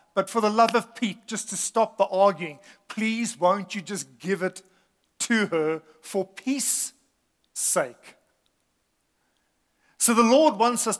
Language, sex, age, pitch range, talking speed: English, male, 50-69, 175-220 Hz, 145 wpm